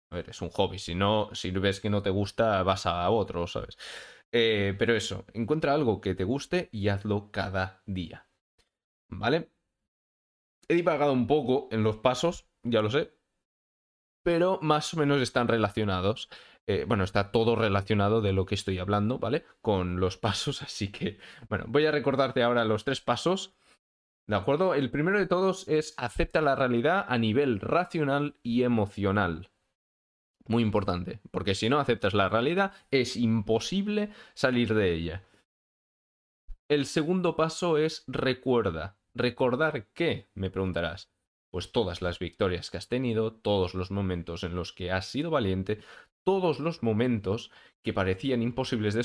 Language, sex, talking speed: Spanish, male, 160 wpm